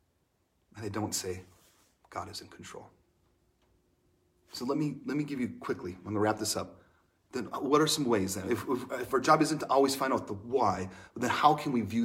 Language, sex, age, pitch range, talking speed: English, male, 30-49, 95-125 Hz, 225 wpm